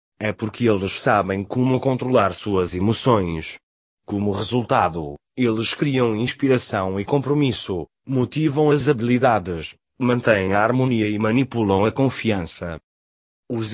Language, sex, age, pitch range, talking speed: English, male, 20-39, 105-130 Hz, 115 wpm